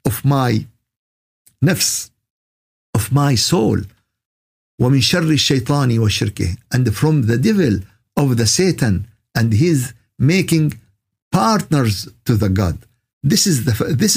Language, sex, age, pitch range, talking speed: Arabic, male, 50-69, 110-150 Hz, 90 wpm